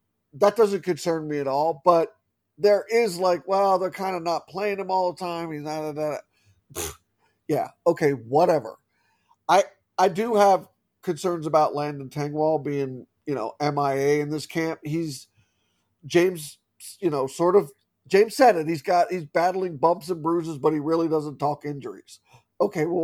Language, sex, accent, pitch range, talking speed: English, male, American, 145-185 Hz, 165 wpm